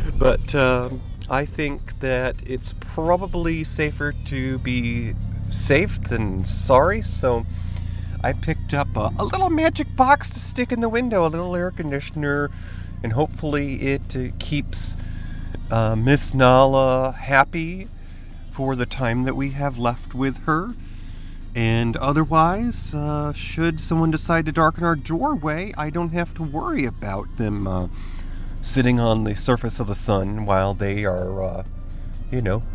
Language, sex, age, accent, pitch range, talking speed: English, male, 30-49, American, 95-145 Hz, 145 wpm